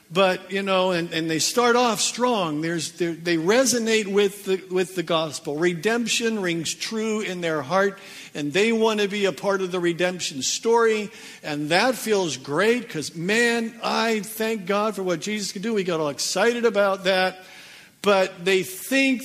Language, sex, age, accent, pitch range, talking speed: English, male, 50-69, American, 170-225 Hz, 180 wpm